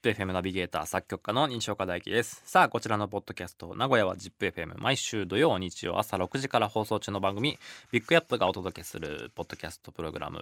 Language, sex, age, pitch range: Japanese, male, 20-39, 90-125 Hz